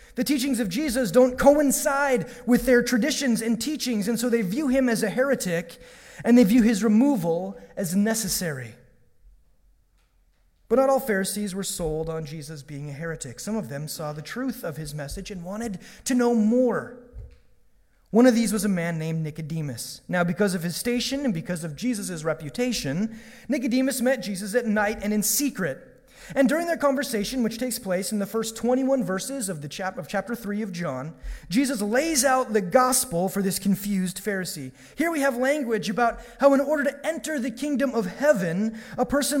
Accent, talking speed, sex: American, 185 wpm, male